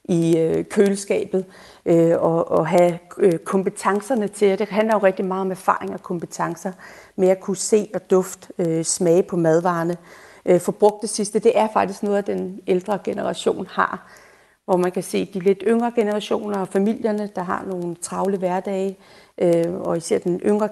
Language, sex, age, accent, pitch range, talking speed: Danish, female, 40-59, native, 170-195 Hz, 175 wpm